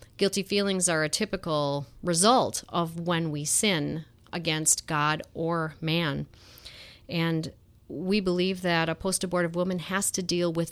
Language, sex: English, female